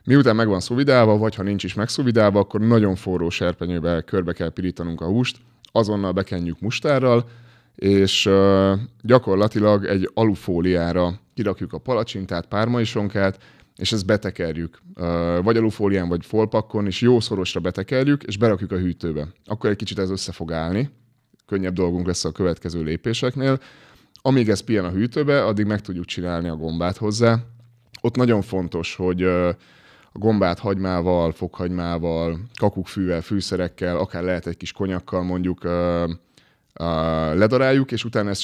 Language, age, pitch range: Hungarian, 20-39, 85-110 Hz